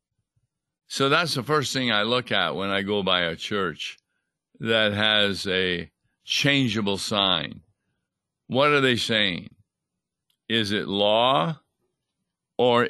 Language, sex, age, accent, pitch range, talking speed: English, male, 60-79, American, 100-125 Hz, 125 wpm